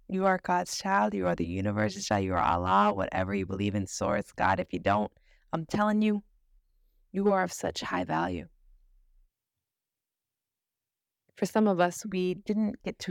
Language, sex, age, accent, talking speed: English, female, 20-39, American, 175 wpm